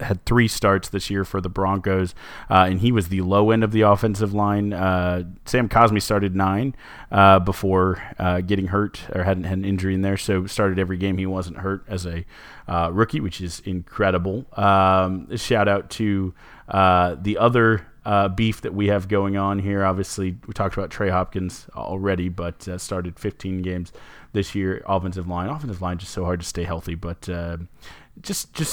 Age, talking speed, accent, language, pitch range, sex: 30-49, 190 wpm, American, English, 90-105 Hz, male